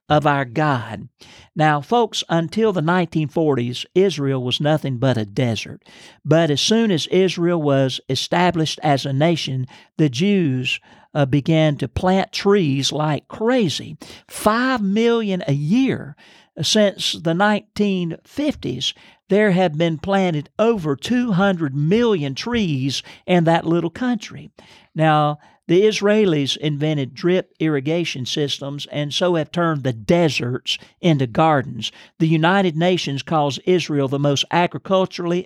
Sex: male